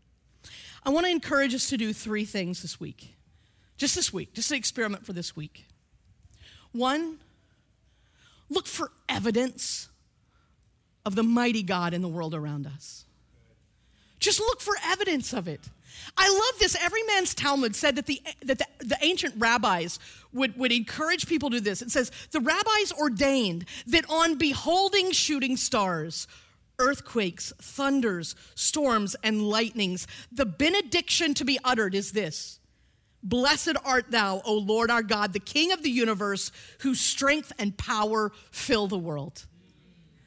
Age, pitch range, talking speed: 40-59, 210-320 Hz, 150 wpm